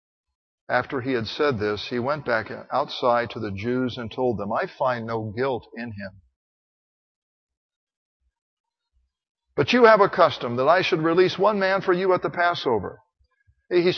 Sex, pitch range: male, 120-205 Hz